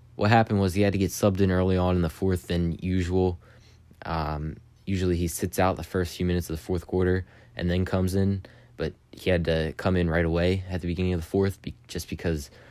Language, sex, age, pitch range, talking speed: English, male, 20-39, 85-100 Hz, 230 wpm